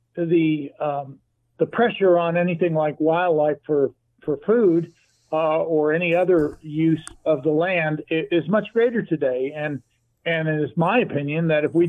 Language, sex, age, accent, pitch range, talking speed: English, male, 50-69, American, 145-180 Hz, 160 wpm